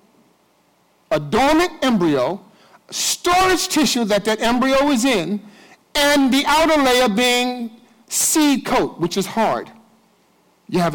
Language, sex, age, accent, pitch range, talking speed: English, male, 50-69, American, 190-265 Hz, 120 wpm